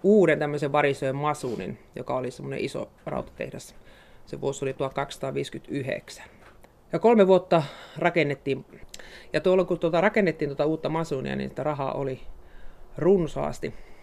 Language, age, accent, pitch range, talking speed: Finnish, 30-49, native, 145-185 Hz, 130 wpm